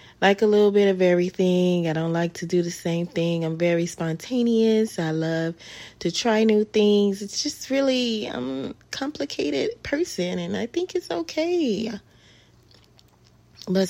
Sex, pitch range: female, 150-175 Hz